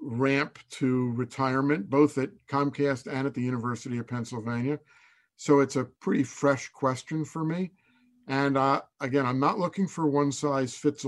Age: 50-69